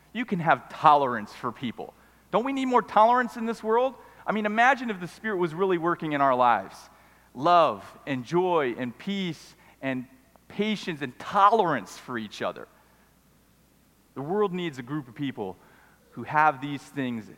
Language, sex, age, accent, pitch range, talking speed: English, male, 40-59, American, 115-150 Hz, 170 wpm